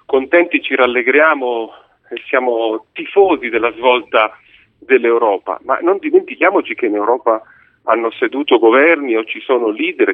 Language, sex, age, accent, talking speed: Italian, male, 40-59, native, 130 wpm